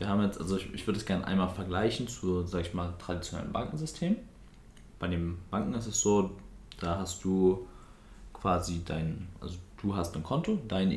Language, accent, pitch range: German, German, 85-105 Hz